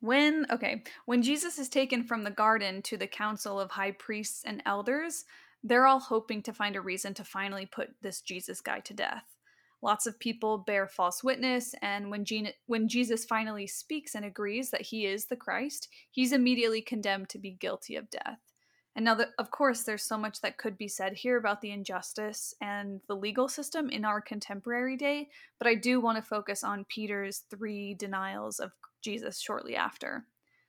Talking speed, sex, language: 195 wpm, female, English